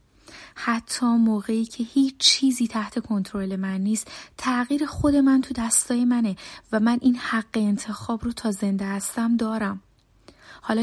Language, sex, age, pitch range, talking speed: Persian, female, 30-49, 215-245 Hz, 145 wpm